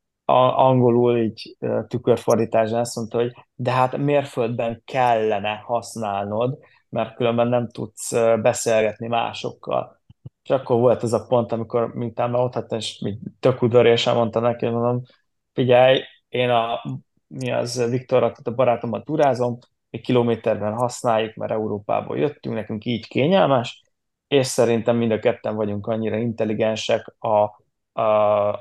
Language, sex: Hungarian, male